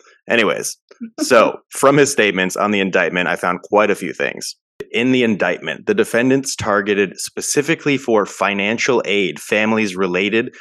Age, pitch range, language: 30-49, 100-145 Hz, English